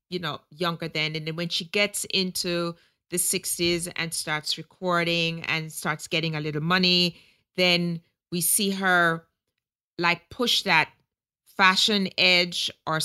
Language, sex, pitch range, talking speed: English, female, 170-205 Hz, 145 wpm